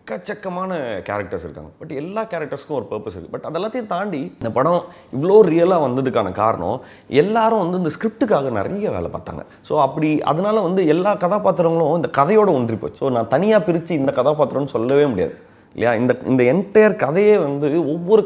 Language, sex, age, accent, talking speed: Tamil, male, 30-49, native, 160 wpm